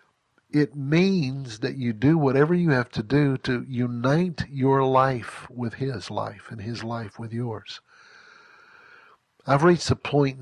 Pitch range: 115-140 Hz